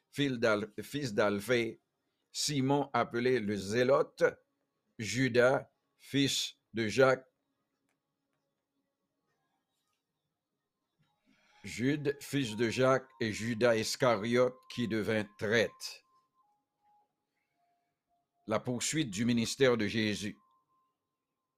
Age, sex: 60-79, male